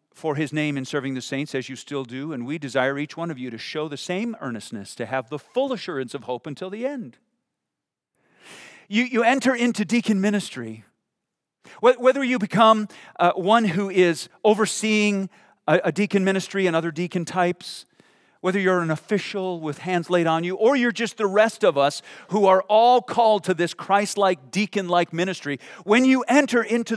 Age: 40-59